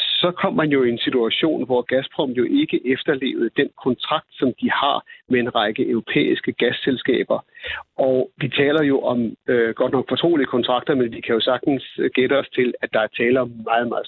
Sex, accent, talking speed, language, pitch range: male, native, 200 wpm, Danish, 125-180 Hz